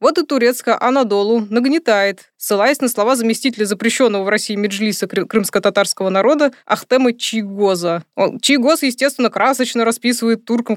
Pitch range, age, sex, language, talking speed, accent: 195-245 Hz, 20-39, female, Russian, 125 wpm, native